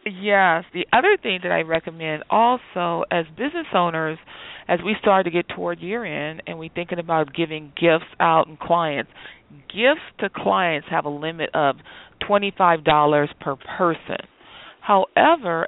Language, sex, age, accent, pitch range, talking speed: English, female, 40-59, American, 155-180 Hz, 145 wpm